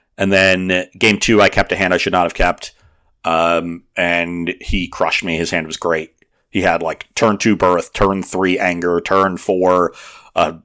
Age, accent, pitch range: 30-49, American, 90-110 Hz